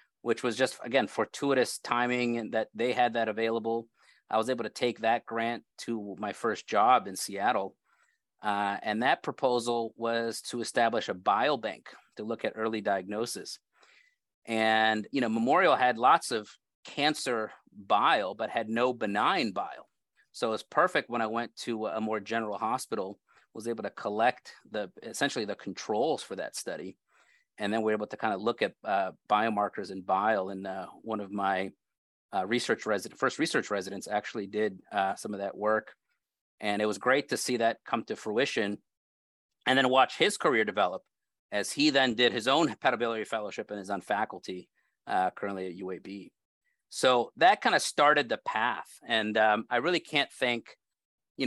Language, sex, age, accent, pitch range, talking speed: English, male, 30-49, American, 105-120 Hz, 180 wpm